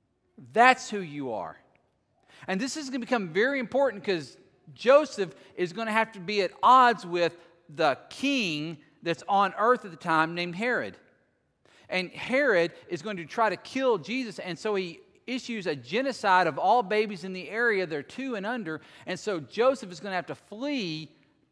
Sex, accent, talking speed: male, American, 185 wpm